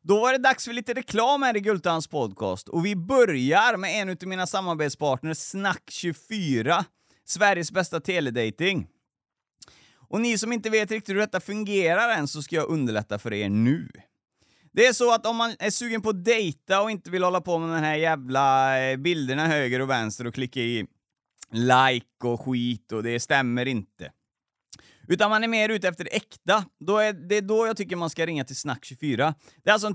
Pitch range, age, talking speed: 130-185 Hz, 30-49, 190 wpm